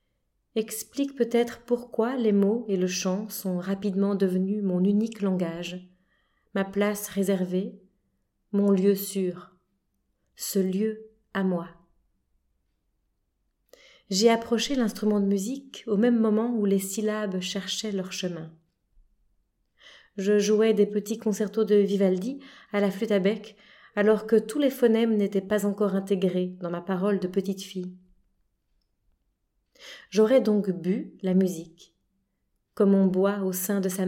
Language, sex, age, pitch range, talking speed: French, female, 30-49, 190-220 Hz, 135 wpm